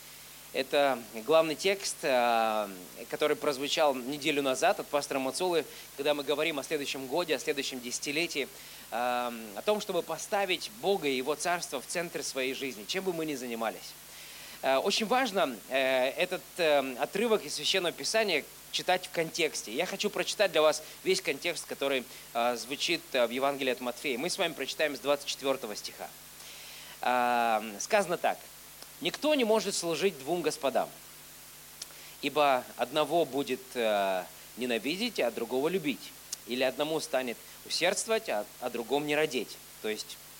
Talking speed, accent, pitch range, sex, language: 135 wpm, native, 130-180 Hz, male, Russian